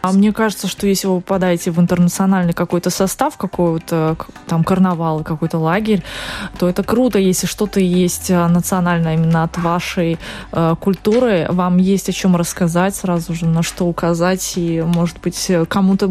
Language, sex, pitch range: Russian, female, 170-200 Hz